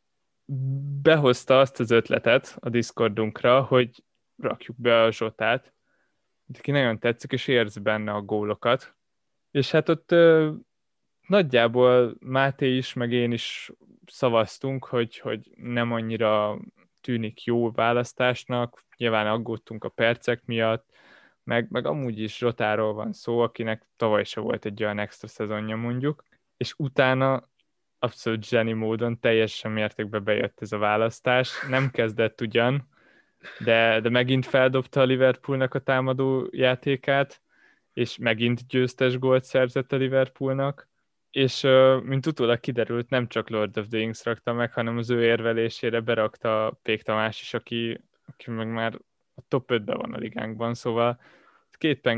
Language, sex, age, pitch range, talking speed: Hungarian, male, 20-39, 110-130 Hz, 135 wpm